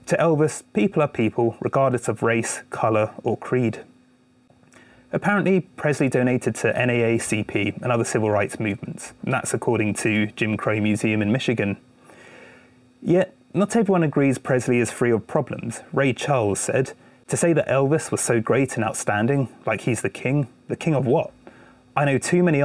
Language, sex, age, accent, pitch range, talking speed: English, male, 30-49, British, 115-140 Hz, 165 wpm